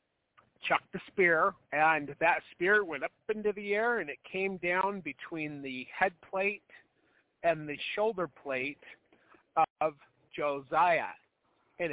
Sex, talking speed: male, 130 wpm